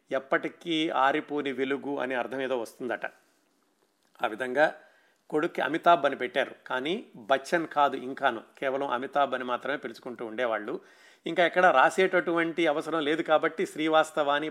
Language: Telugu